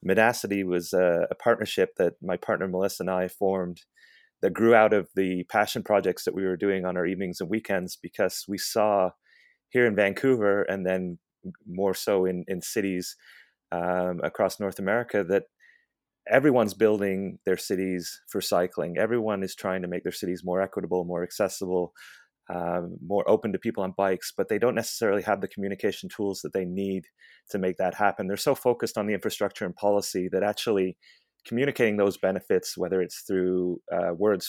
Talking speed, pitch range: 180 wpm, 90-100 Hz